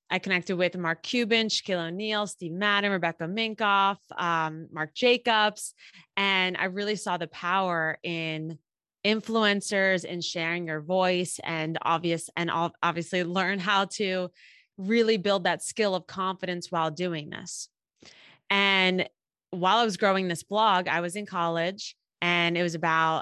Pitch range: 160-185 Hz